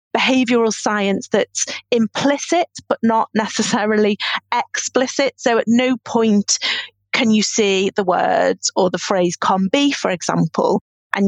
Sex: female